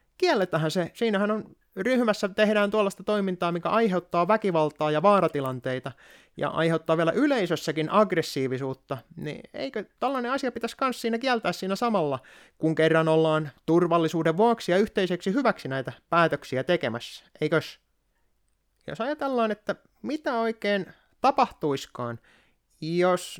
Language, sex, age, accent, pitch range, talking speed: Finnish, male, 30-49, native, 145-210 Hz, 120 wpm